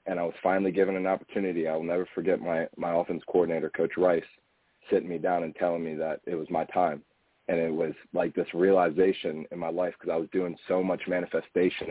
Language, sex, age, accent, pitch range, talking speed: English, male, 30-49, American, 85-105 Hz, 220 wpm